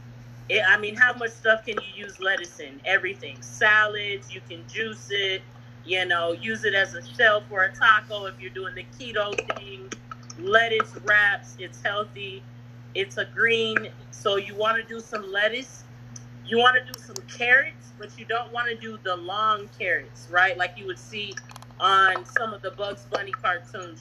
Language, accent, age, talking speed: English, American, 40-59, 180 wpm